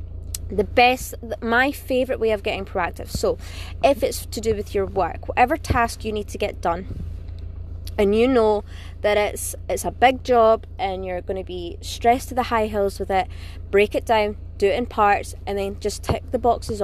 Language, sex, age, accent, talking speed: English, female, 20-39, British, 205 wpm